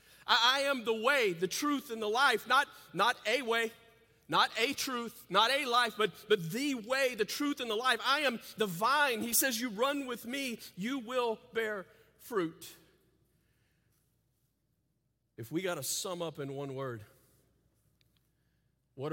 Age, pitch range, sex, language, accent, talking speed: 40-59, 115-160 Hz, male, English, American, 165 wpm